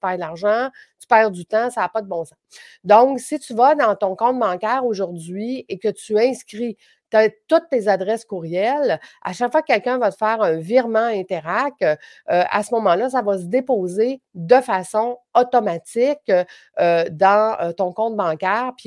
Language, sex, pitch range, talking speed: French, female, 185-240 Hz, 195 wpm